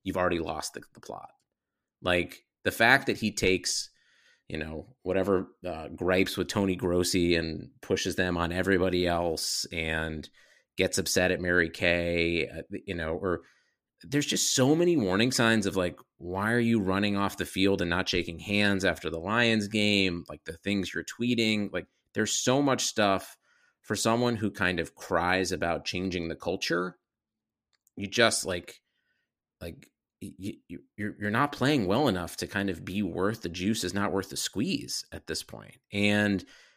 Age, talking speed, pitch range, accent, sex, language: 30-49, 170 wpm, 90-115 Hz, American, male, English